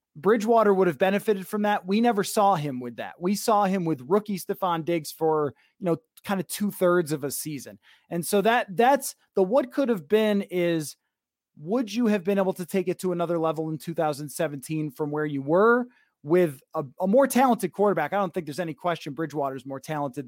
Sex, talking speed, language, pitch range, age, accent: male, 215 wpm, English, 165-220 Hz, 30-49, American